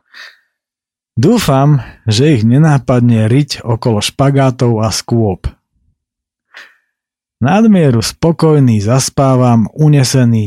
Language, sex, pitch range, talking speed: Slovak, male, 110-140 Hz, 75 wpm